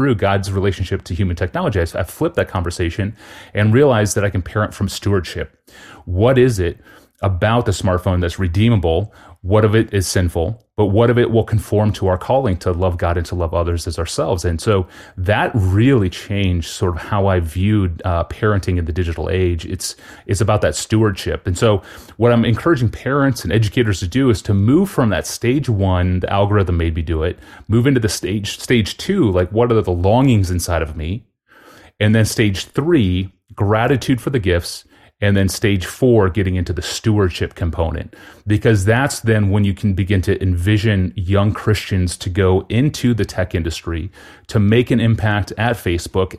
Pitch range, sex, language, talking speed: 90-115 Hz, male, English, 195 wpm